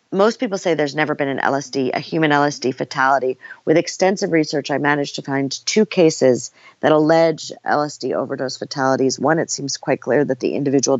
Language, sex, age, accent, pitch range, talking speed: English, female, 40-59, American, 130-155 Hz, 185 wpm